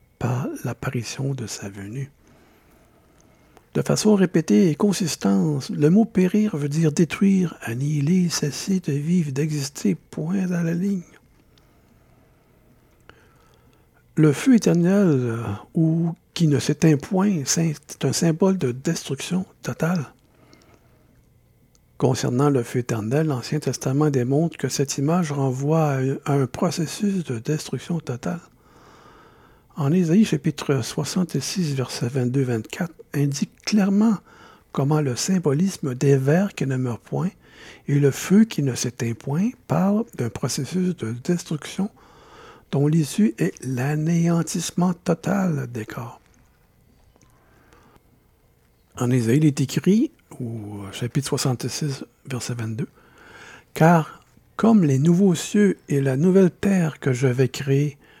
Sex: male